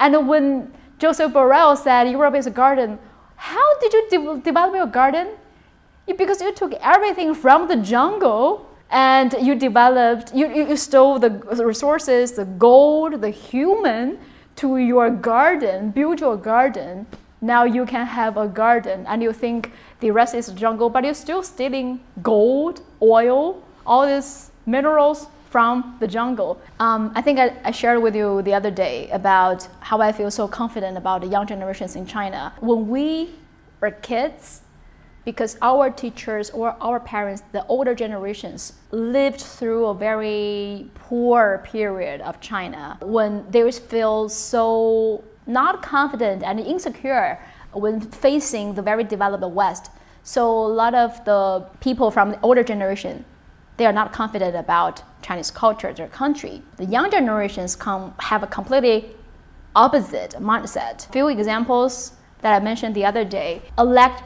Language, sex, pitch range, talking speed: English, female, 215-270 Hz, 150 wpm